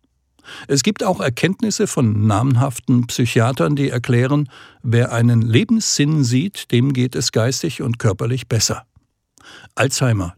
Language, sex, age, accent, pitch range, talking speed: German, male, 60-79, German, 115-145 Hz, 120 wpm